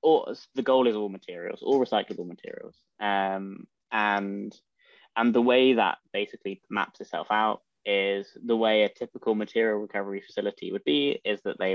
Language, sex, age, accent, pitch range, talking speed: English, male, 10-29, British, 95-115 Hz, 165 wpm